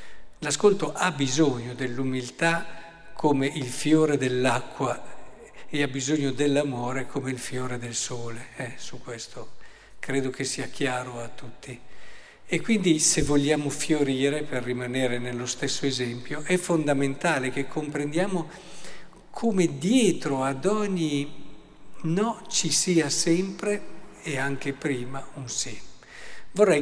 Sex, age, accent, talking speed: male, 50-69, native, 120 wpm